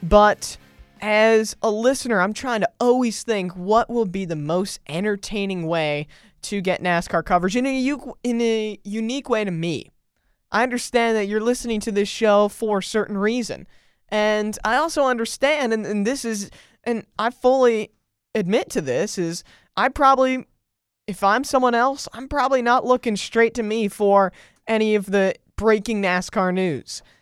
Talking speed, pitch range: 170 wpm, 180-230 Hz